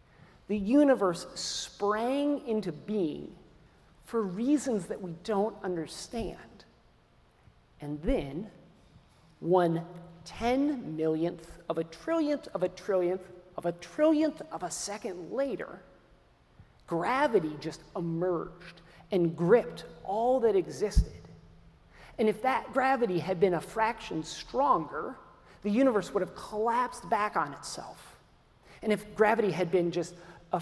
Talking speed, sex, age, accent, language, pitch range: 125 wpm, male, 40-59, American, English, 175-245 Hz